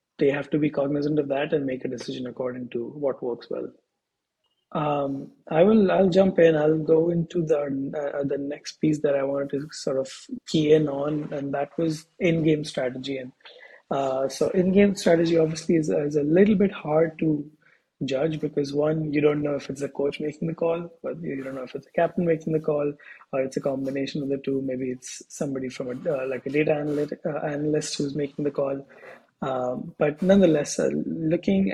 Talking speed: 200 wpm